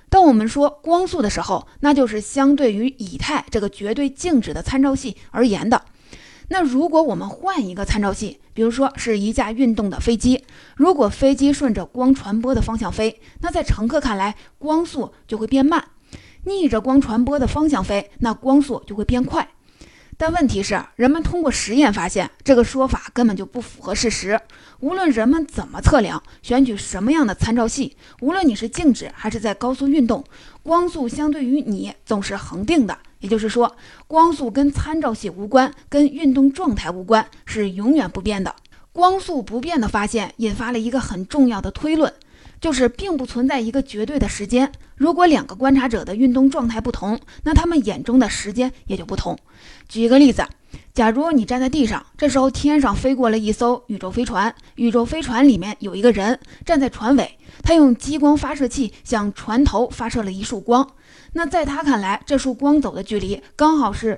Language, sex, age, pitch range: Chinese, female, 20-39, 225-285 Hz